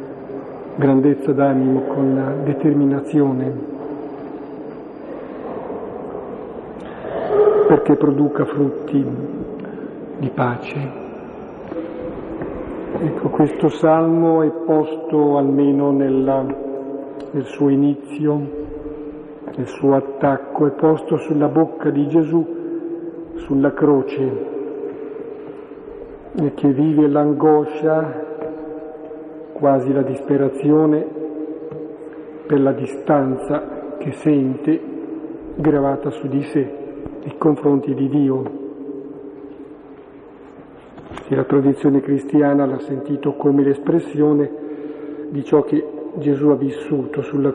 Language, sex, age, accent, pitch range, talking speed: Italian, male, 50-69, native, 140-155 Hz, 80 wpm